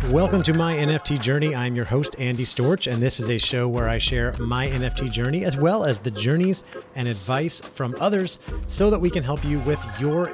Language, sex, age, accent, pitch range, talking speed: English, male, 30-49, American, 125-150 Hz, 220 wpm